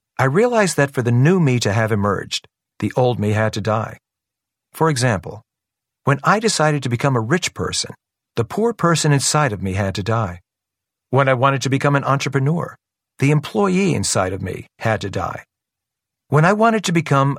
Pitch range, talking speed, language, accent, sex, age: 110-145 Hz, 190 wpm, English, American, male, 50-69